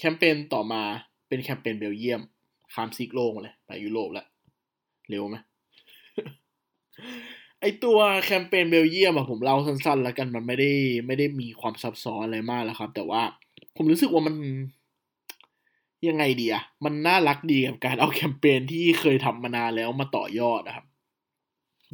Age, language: 20-39, Thai